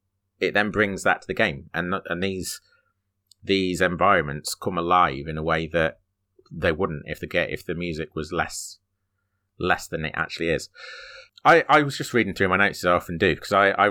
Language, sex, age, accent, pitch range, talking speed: English, male, 30-49, British, 85-100 Hz, 205 wpm